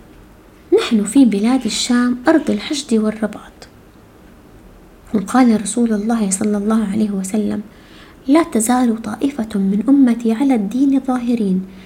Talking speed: 110 wpm